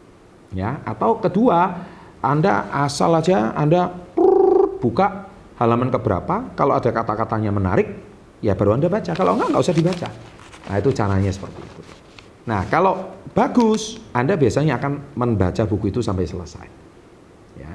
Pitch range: 105-140 Hz